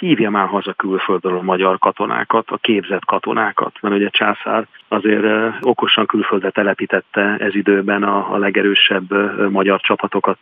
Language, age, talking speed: Hungarian, 40-59, 140 wpm